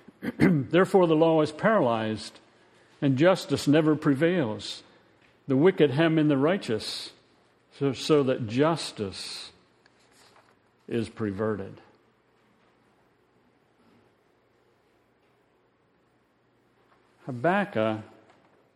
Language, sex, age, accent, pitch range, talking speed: English, male, 60-79, American, 125-165 Hz, 70 wpm